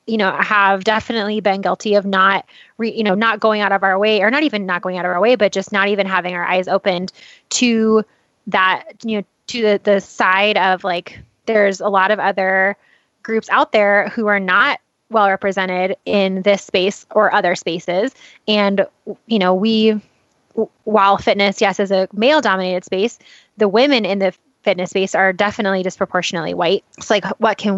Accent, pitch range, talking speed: American, 195-225 Hz, 190 wpm